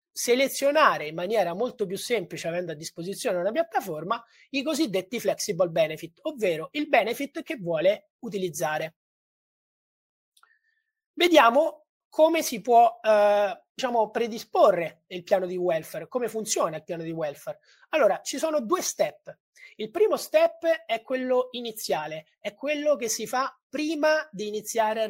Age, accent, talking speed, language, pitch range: 30-49, native, 140 wpm, Italian, 180-285 Hz